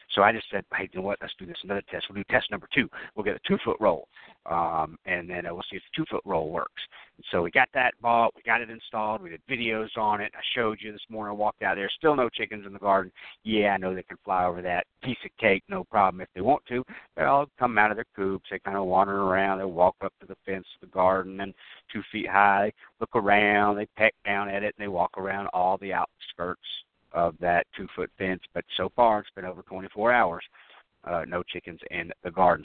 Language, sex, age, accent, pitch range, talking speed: English, male, 50-69, American, 90-105 Hz, 250 wpm